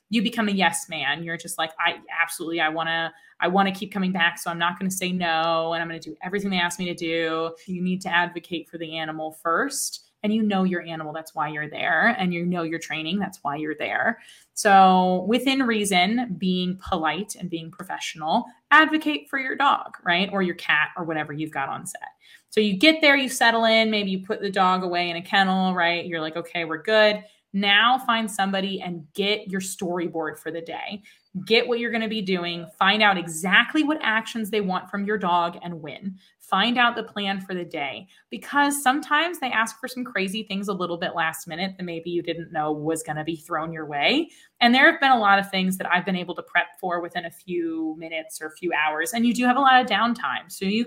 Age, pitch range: 20-39, 170-215 Hz